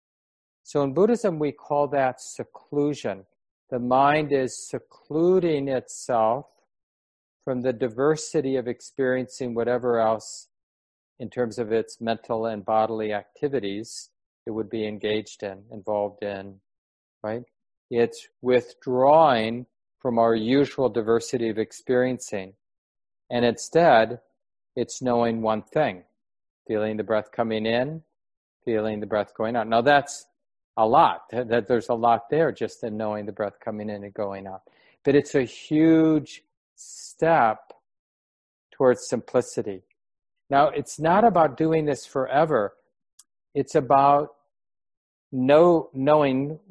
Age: 40-59